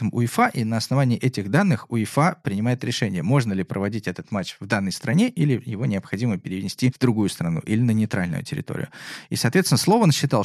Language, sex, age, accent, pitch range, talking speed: Russian, male, 20-39, native, 100-140 Hz, 185 wpm